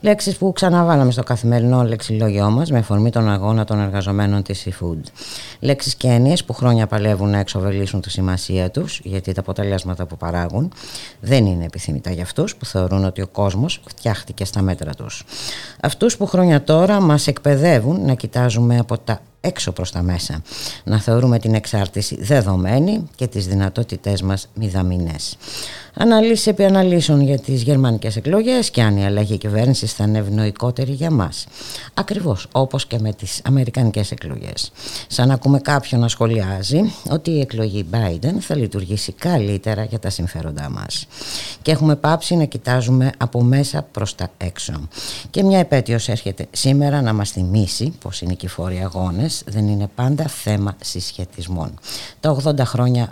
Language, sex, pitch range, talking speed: Greek, female, 100-140 Hz, 160 wpm